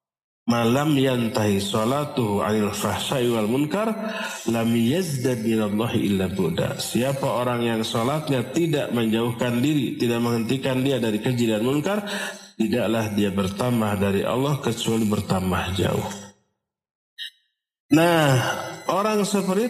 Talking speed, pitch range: 95 wpm, 115-180 Hz